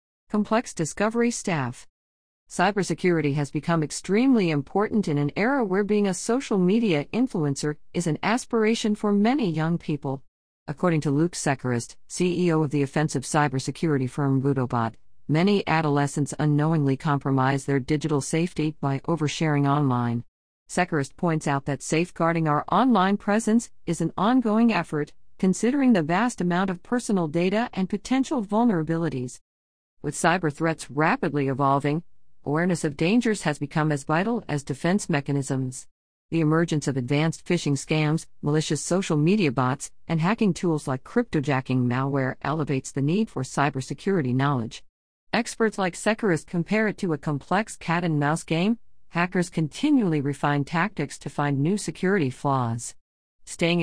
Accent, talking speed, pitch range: American, 140 wpm, 140-190 Hz